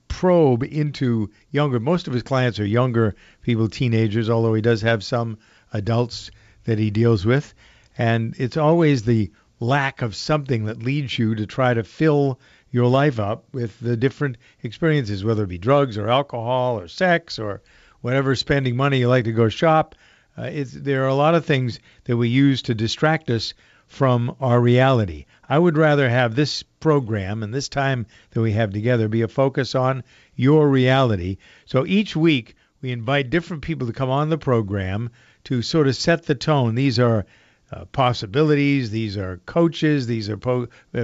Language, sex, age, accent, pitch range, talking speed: English, male, 50-69, American, 115-140 Hz, 175 wpm